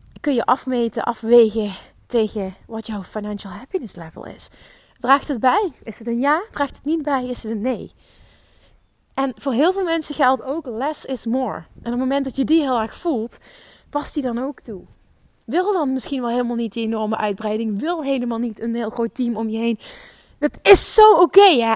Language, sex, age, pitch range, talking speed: Dutch, female, 20-39, 220-275 Hz, 205 wpm